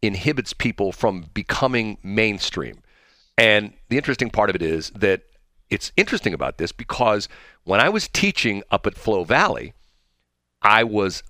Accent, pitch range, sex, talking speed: American, 80-120 Hz, male, 150 wpm